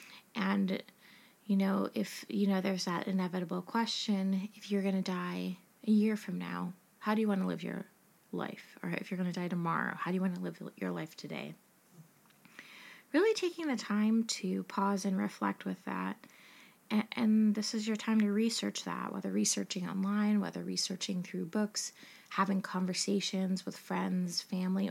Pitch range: 190-220 Hz